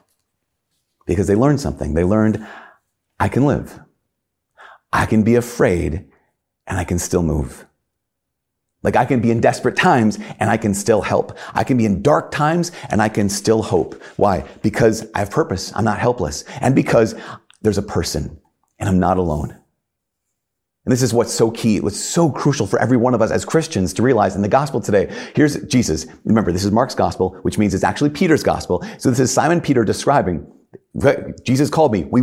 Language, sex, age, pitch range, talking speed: English, male, 40-59, 95-125 Hz, 190 wpm